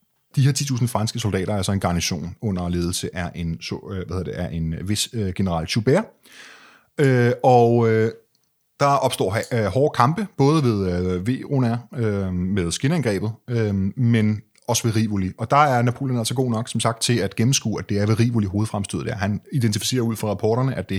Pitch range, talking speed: 100-135 Hz, 195 wpm